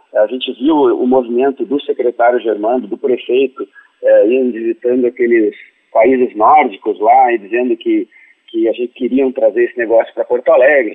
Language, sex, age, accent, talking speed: Portuguese, male, 40-59, Brazilian, 160 wpm